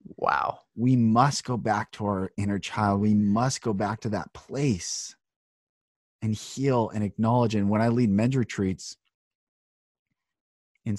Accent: American